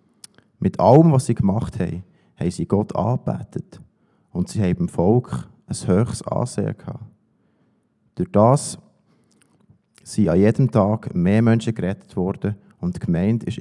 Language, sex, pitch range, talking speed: German, male, 100-125 Hz, 145 wpm